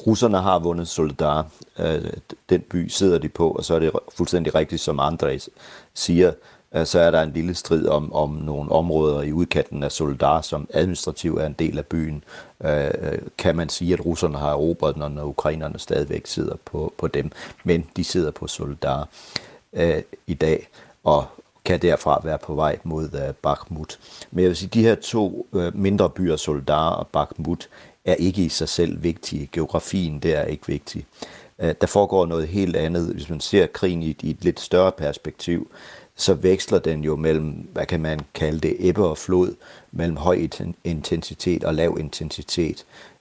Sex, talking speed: male, 175 wpm